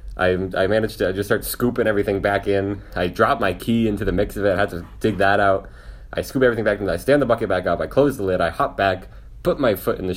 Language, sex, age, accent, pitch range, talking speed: English, male, 20-39, American, 90-110 Hz, 285 wpm